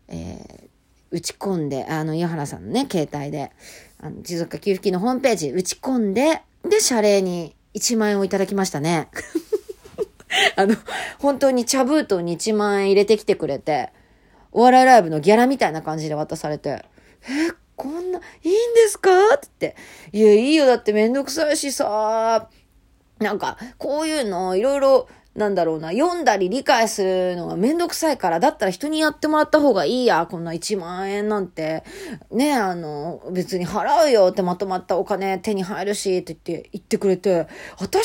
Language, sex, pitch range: Japanese, female, 180-300 Hz